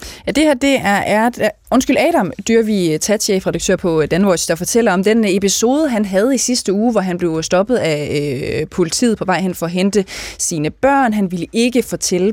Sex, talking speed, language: female, 195 wpm, Danish